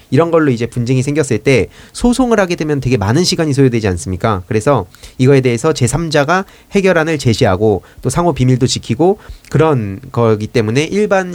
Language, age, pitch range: Korean, 30-49, 105-145 Hz